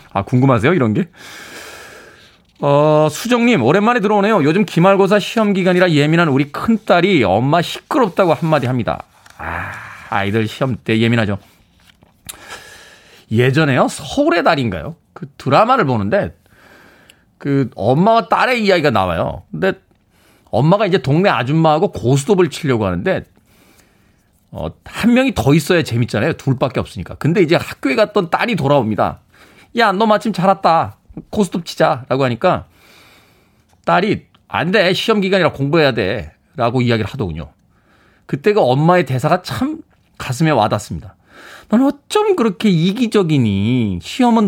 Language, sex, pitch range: Korean, male, 125-205 Hz